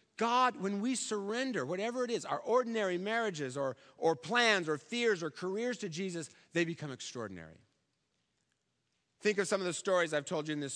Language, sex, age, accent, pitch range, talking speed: English, male, 40-59, American, 155-210 Hz, 185 wpm